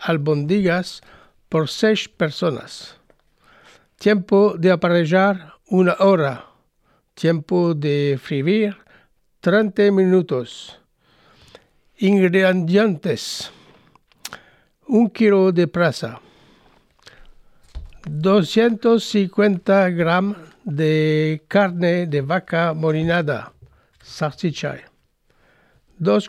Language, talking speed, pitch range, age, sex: French, 65 wpm, 160-200 Hz, 60-79, male